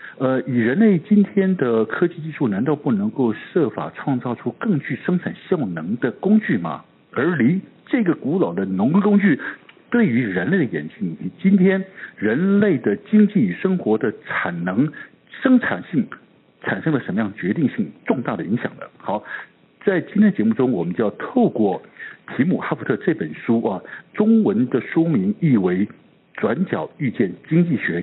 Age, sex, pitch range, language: 60-79, male, 150-215 Hz, Chinese